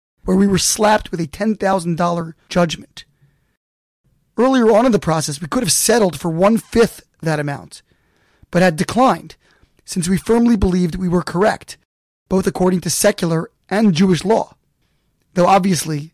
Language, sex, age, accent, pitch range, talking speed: English, male, 20-39, American, 170-210 Hz, 150 wpm